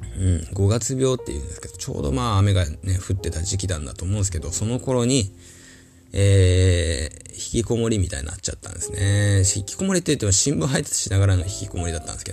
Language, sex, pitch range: Japanese, male, 85-115 Hz